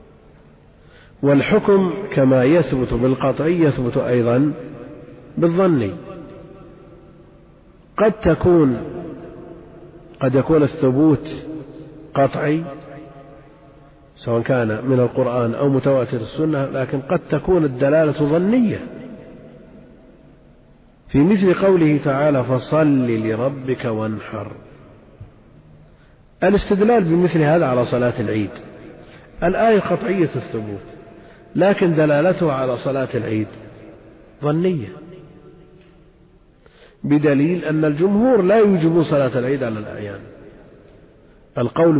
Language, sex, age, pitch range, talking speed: Arabic, male, 50-69, 120-155 Hz, 80 wpm